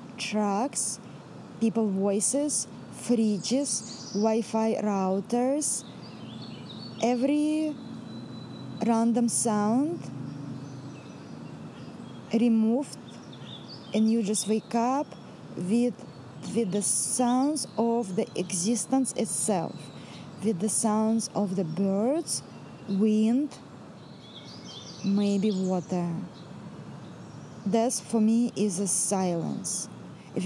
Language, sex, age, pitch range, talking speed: English, female, 20-39, 200-240 Hz, 75 wpm